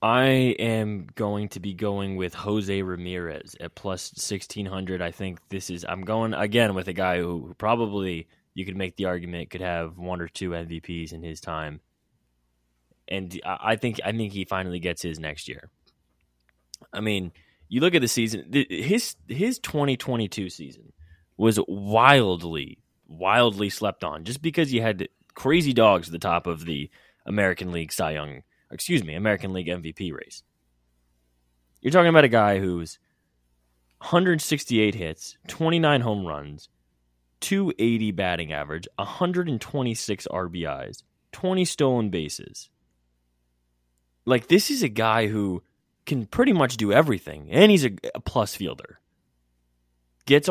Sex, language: male, English